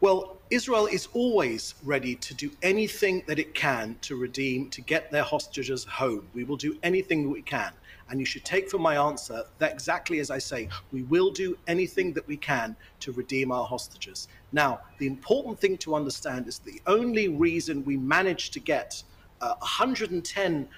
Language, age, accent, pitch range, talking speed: English, 40-59, British, 130-175 Hz, 180 wpm